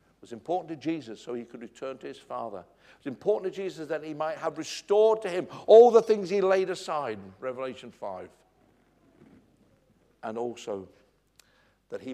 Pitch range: 110-155 Hz